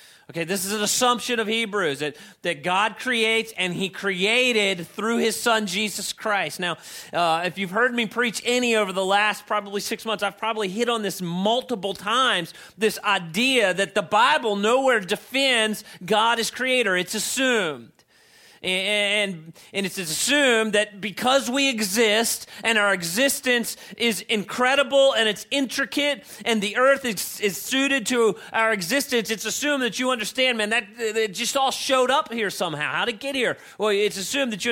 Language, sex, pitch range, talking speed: English, male, 205-255 Hz, 175 wpm